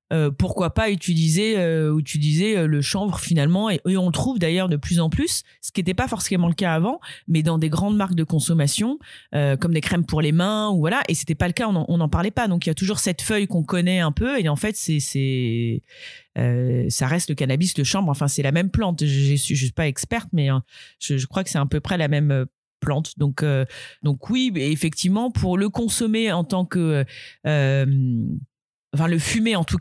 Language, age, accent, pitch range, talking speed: French, 30-49, French, 145-190 Hz, 240 wpm